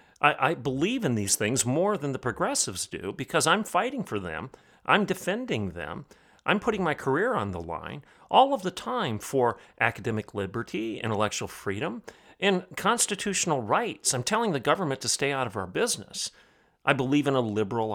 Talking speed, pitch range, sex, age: 175 wpm, 115-165 Hz, male, 40-59